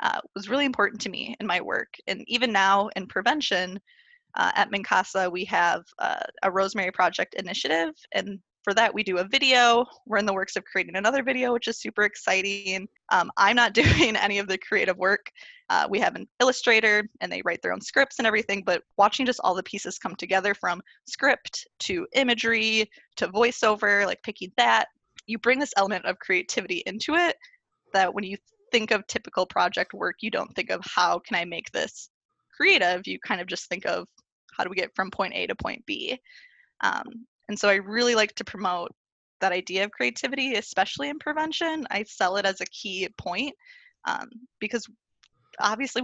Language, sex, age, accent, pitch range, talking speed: English, female, 20-39, American, 195-250 Hz, 195 wpm